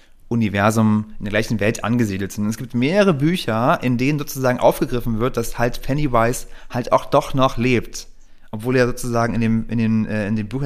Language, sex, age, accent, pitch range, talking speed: German, male, 30-49, German, 120-145 Hz, 180 wpm